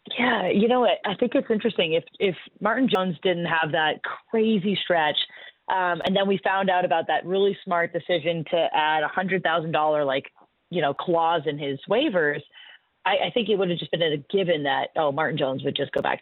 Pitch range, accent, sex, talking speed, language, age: 155-195 Hz, American, female, 220 wpm, English, 30-49